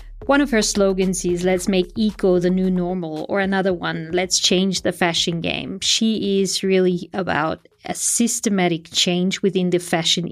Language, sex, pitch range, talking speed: English, female, 180-220 Hz, 170 wpm